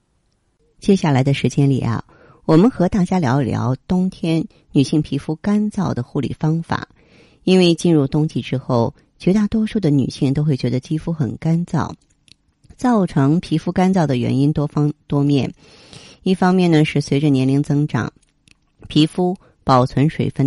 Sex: female